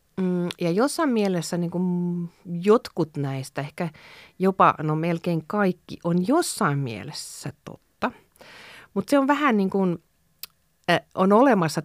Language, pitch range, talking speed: Finnish, 140-185 Hz, 120 wpm